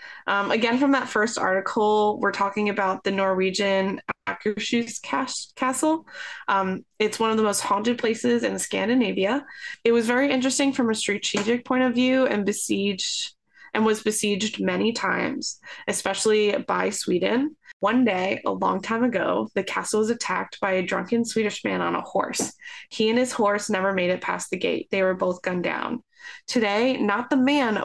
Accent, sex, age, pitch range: American, female, 20-39, 195-245 Hz